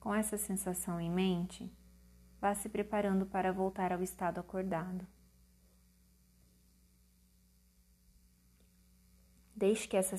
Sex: female